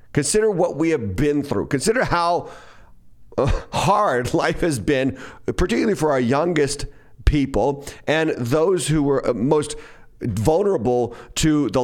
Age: 40-59